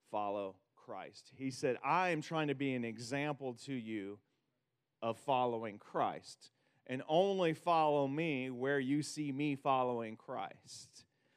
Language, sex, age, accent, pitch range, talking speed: English, male, 40-59, American, 115-140 Hz, 135 wpm